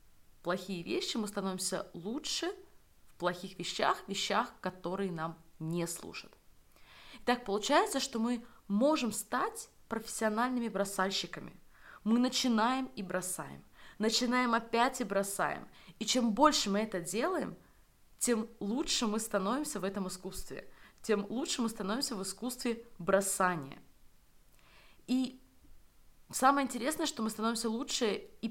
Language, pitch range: Russian, 185-245 Hz